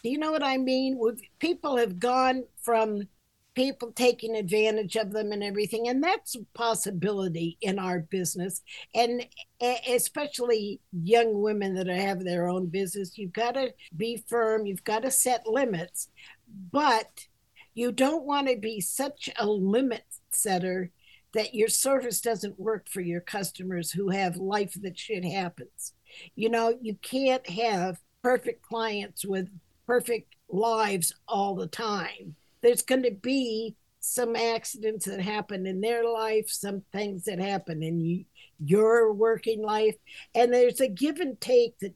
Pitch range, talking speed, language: 190-235 Hz, 150 wpm, English